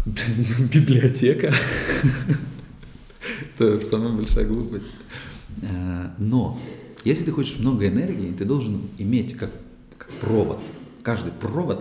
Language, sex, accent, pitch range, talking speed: Russian, male, native, 85-110 Hz, 95 wpm